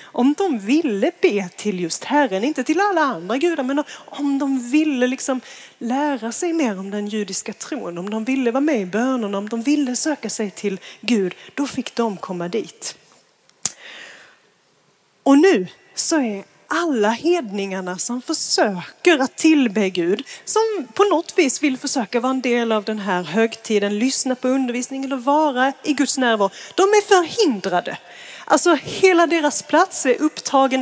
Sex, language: female, Swedish